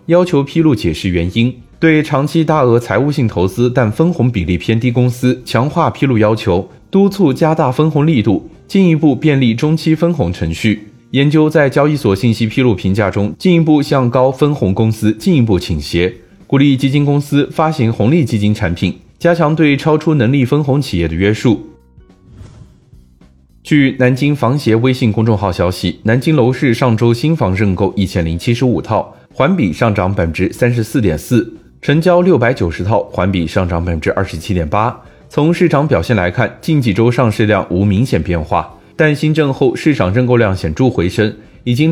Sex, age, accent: male, 20-39, native